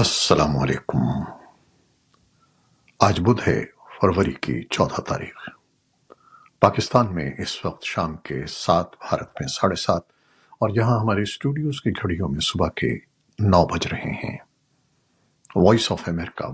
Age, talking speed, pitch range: 60-79, 130 wpm, 95-130 Hz